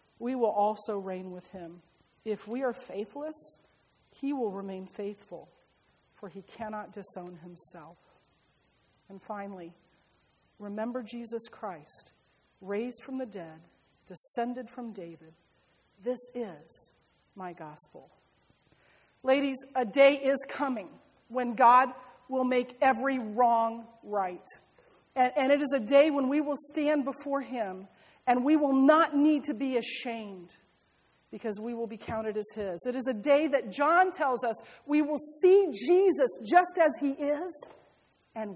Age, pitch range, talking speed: 40-59, 210-275 Hz, 140 wpm